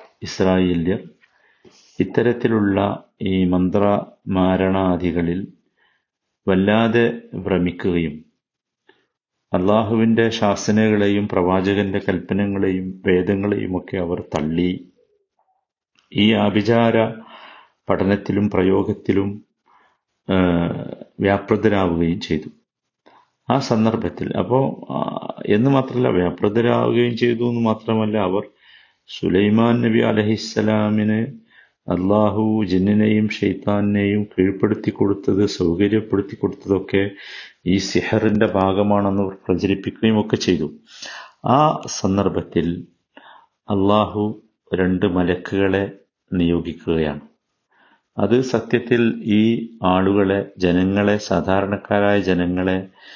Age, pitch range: 50-69, 95-110 Hz